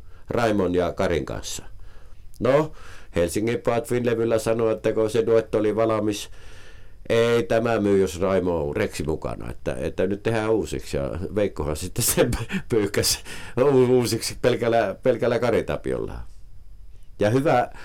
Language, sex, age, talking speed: Finnish, male, 50-69, 120 wpm